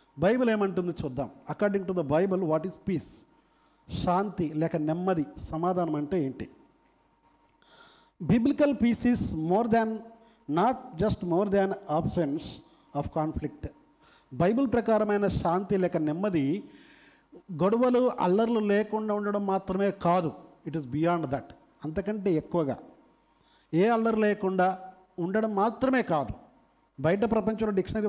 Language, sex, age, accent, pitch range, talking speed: Telugu, male, 50-69, native, 170-220 Hz, 155 wpm